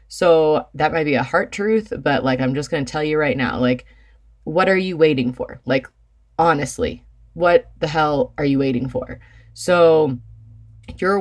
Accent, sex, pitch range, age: American, female, 130-180 Hz, 20-39